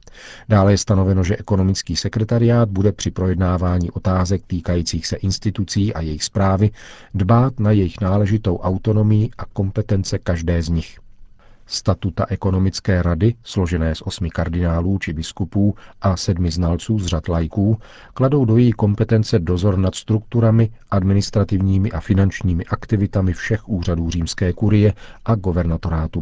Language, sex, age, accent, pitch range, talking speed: Czech, male, 40-59, native, 90-105 Hz, 135 wpm